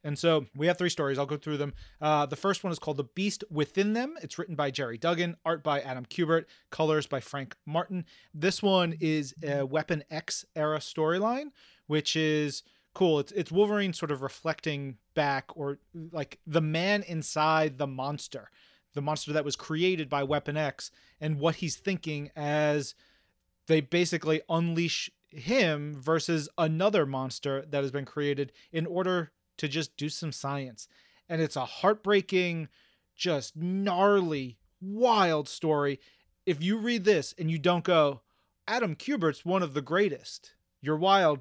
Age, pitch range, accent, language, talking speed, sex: 30-49, 145-185 Hz, American, English, 165 wpm, male